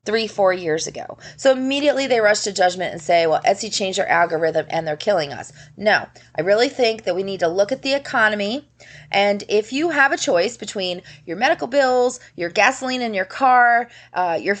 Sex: female